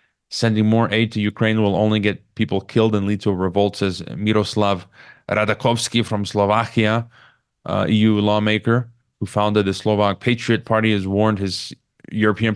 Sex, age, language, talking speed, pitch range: male, 30-49, English, 160 wpm, 100-120 Hz